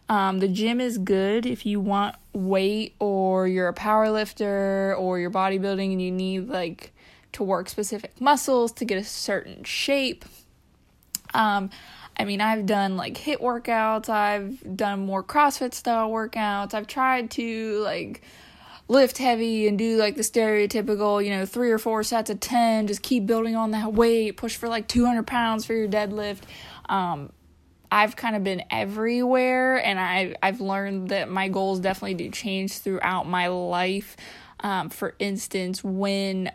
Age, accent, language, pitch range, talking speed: 20-39, American, English, 195-230 Hz, 165 wpm